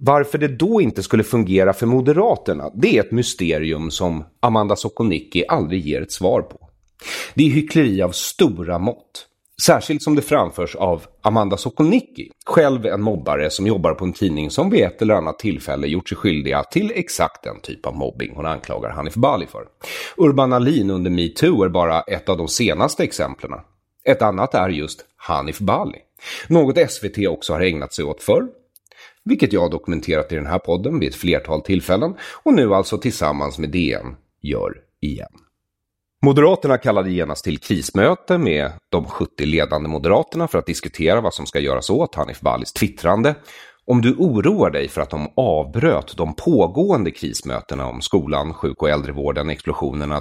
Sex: male